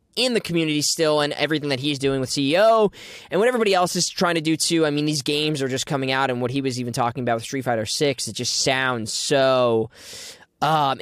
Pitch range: 120-160 Hz